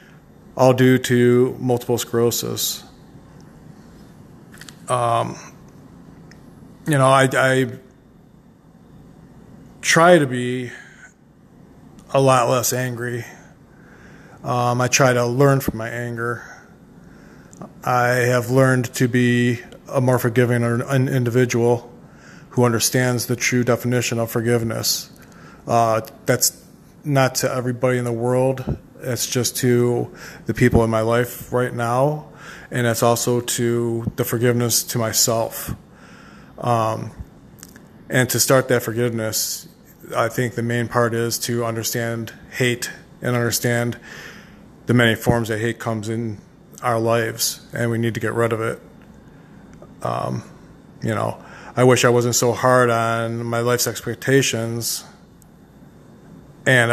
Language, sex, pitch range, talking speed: English, male, 115-125 Hz, 120 wpm